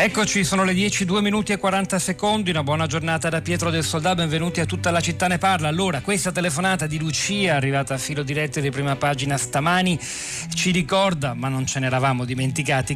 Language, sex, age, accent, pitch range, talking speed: Italian, male, 40-59, native, 135-165 Hz, 200 wpm